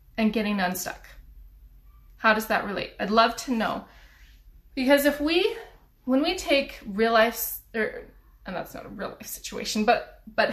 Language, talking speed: English, 165 wpm